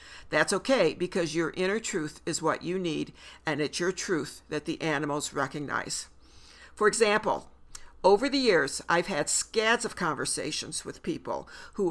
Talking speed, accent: 155 wpm, American